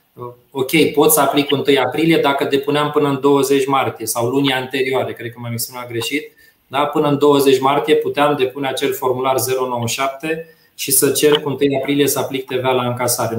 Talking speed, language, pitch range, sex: 185 wpm, Romanian, 125-145 Hz, male